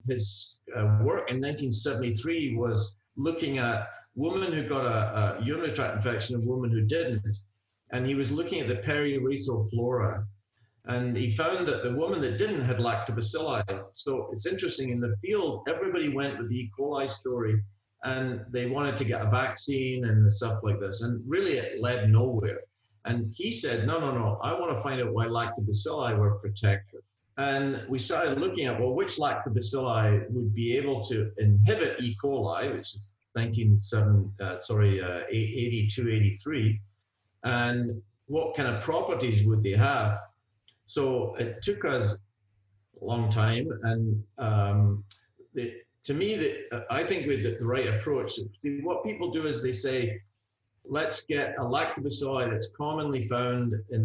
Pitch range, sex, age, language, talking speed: 105-130 Hz, male, 50-69, English, 165 wpm